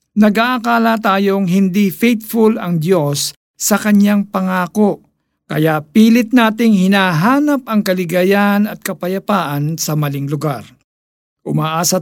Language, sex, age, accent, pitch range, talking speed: Filipino, male, 50-69, native, 155-215 Hz, 105 wpm